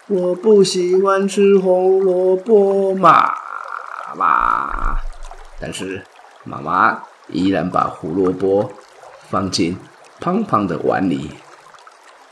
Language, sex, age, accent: Chinese, male, 30-49, native